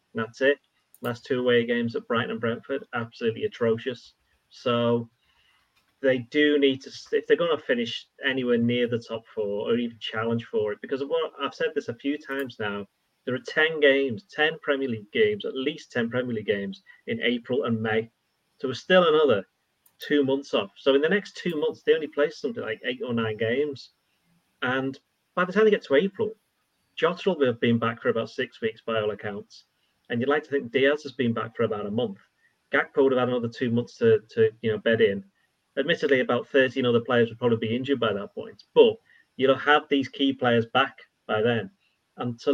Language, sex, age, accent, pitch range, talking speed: English, male, 30-49, British, 115-170 Hz, 215 wpm